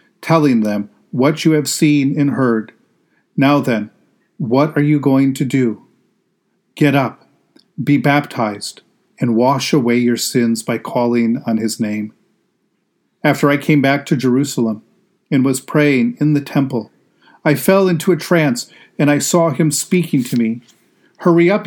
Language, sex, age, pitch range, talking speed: English, male, 40-59, 130-180 Hz, 155 wpm